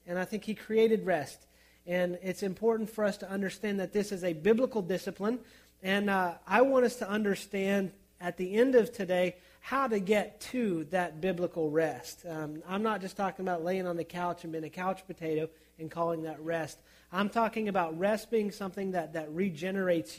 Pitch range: 170-195 Hz